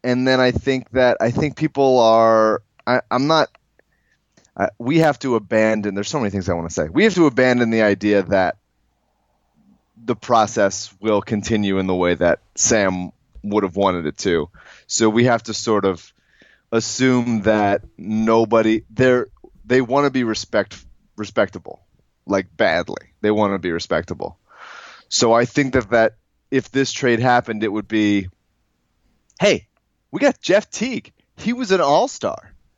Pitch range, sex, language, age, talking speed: 100-125 Hz, male, English, 30-49, 170 wpm